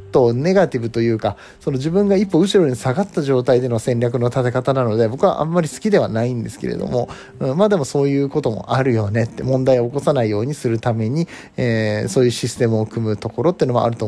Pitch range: 115-175 Hz